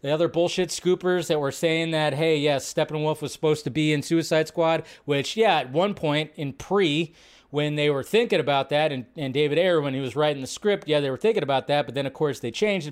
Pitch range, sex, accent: 140-180 Hz, male, American